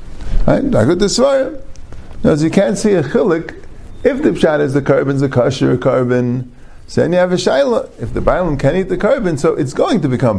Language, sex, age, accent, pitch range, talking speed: English, male, 50-69, American, 115-175 Hz, 215 wpm